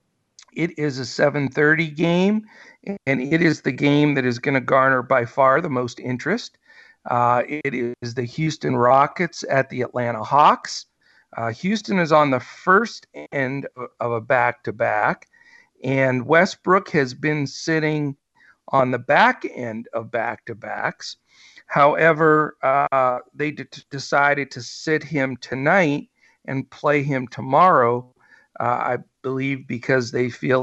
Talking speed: 150 wpm